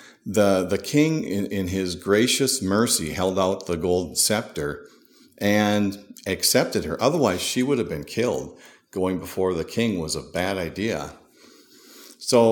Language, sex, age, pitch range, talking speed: English, male, 50-69, 90-125 Hz, 150 wpm